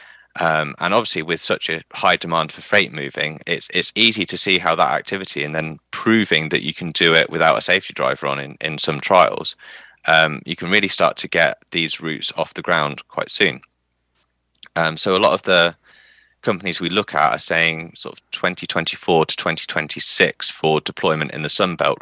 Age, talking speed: 20-39, 195 wpm